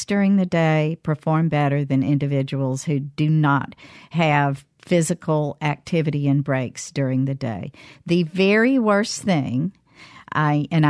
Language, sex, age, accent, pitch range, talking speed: English, female, 50-69, American, 145-185 Hz, 130 wpm